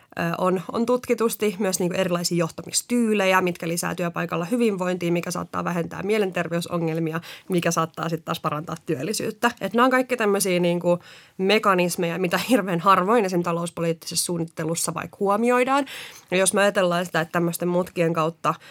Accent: native